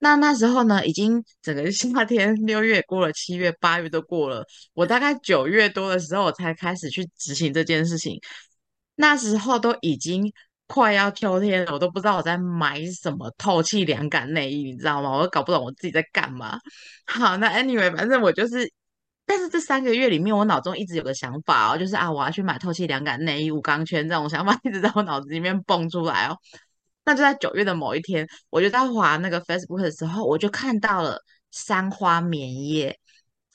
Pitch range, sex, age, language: 155-205 Hz, female, 20-39, Chinese